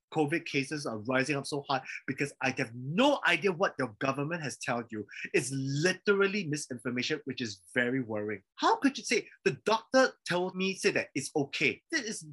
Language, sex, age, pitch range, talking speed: English, male, 20-39, 150-225 Hz, 190 wpm